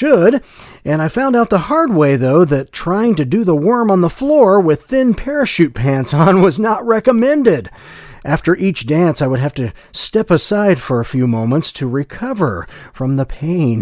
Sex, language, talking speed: male, English, 190 wpm